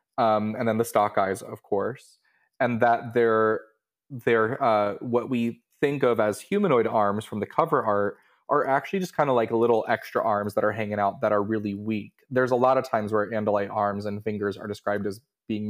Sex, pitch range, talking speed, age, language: male, 110-125 Hz, 210 wpm, 20-39, English